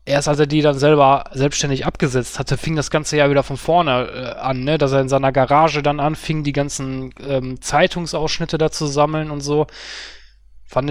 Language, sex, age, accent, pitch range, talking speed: German, male, 20-39, German, 140-175 Hz, 195 wpm